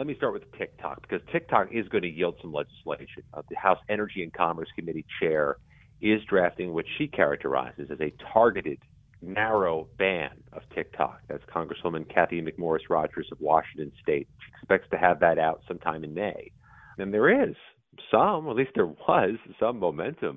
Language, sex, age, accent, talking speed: English, male, 40-59, American, 170 wpm